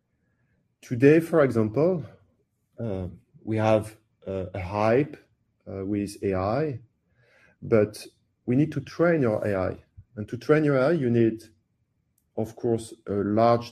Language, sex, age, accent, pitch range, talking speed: English, male, 40-59, French, 105-135 Hz, 130 wpm